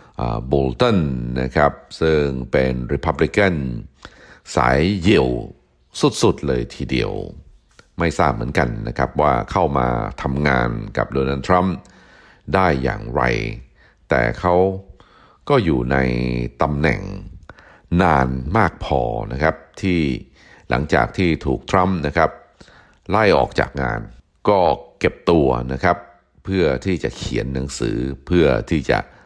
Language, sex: Thai, male